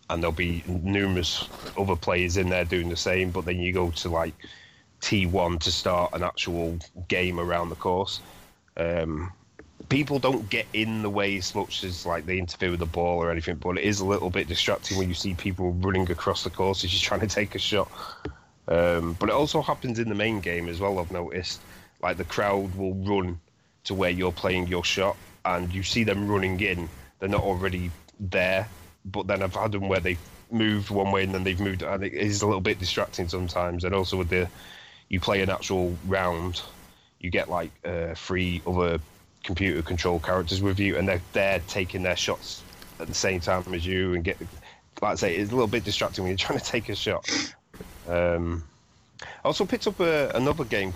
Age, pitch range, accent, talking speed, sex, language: 20-39, 90-100 Hz, British, 205 wpm, male, English